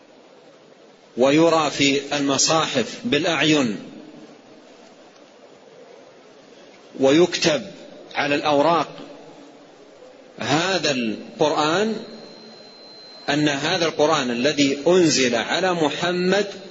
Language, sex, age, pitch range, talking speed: Arabic, male, 40-59, 140-180 Hz, 55 wpm